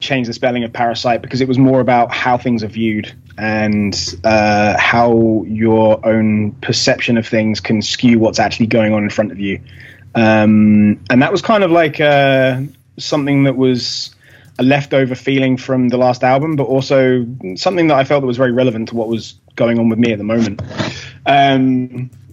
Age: 20-39